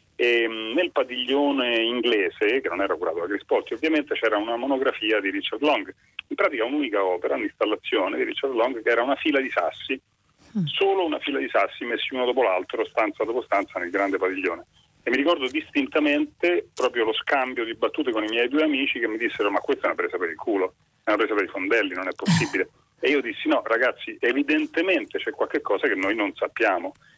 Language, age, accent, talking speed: Italian, 40-59, native, 205 wpm